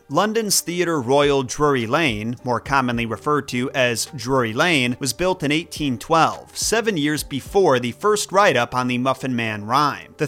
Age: 30-49